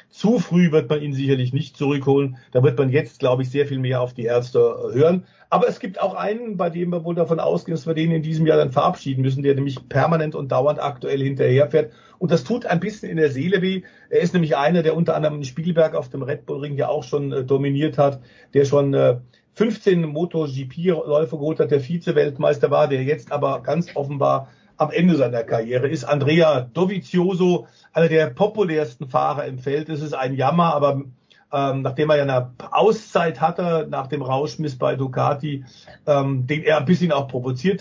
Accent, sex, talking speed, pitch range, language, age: German, male, 205 wpm, 140-165 Hz, German, 50-69